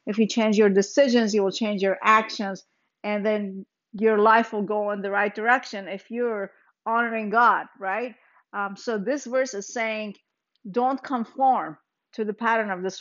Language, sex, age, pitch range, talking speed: English, female, 50-69, 200-240 Hz, 175 wpm